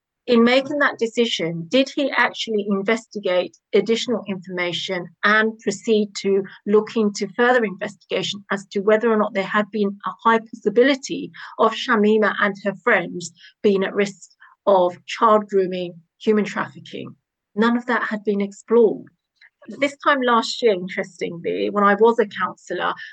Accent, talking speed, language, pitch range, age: British, 150 wpm, English, 195-230 Hz, 40-59